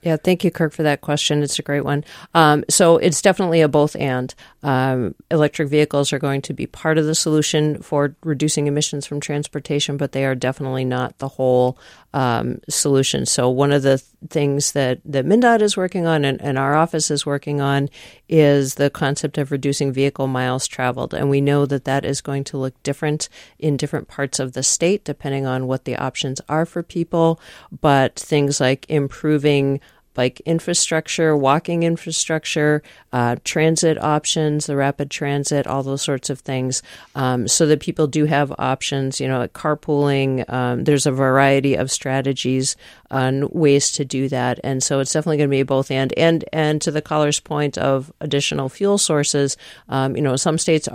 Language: English